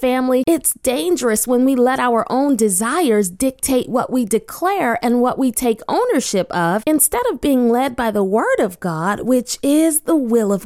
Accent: American